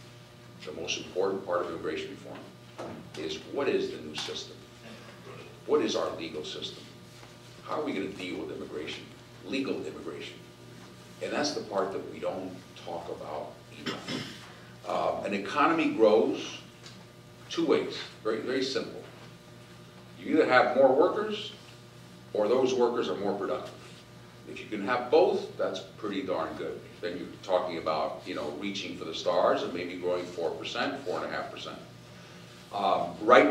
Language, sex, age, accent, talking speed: English, male, 50-69, American, 155 wpm